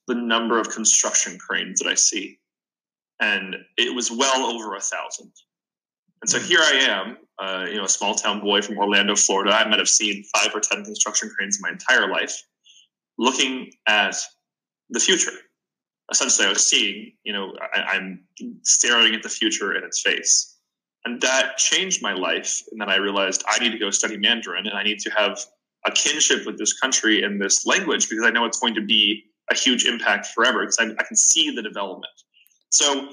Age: 20-39